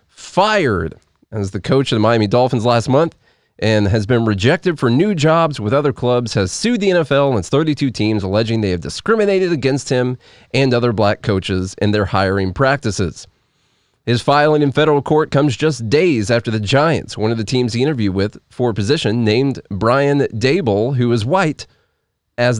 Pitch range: 110-140 Hz